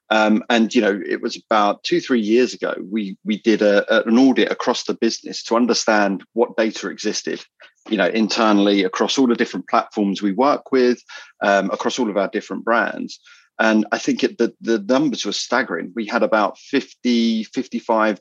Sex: male